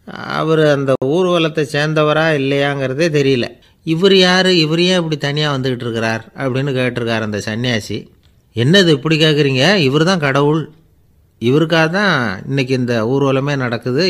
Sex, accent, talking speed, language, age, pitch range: male, native, 120 wpm, Tamil, 30-49, 120-155 Hz